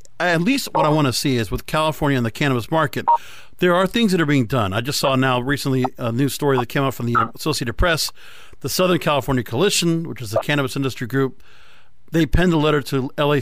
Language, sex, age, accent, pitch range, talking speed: English, male, 40-59, American, 130-165 Hz, 235 wpm